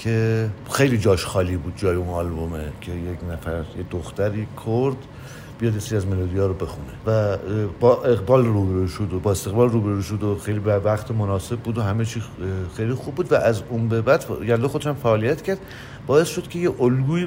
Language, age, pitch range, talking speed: English, 50-69, 100-130 Hz, 200 wpm